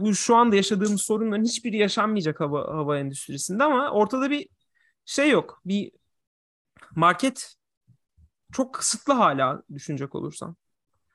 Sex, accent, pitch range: male, native, 160-235 Hz